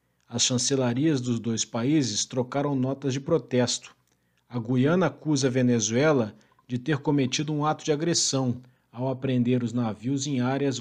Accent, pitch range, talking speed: Brazilian, 120-140 Hz, 150 wpm